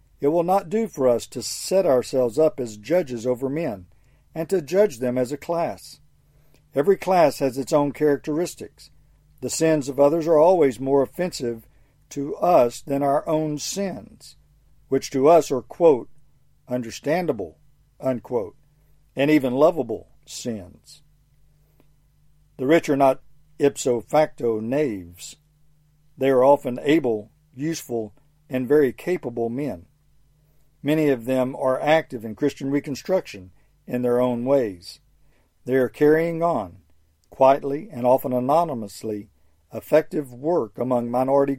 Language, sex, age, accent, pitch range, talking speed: English, male, 50-69, American, 120-150 Hz, 135 wpm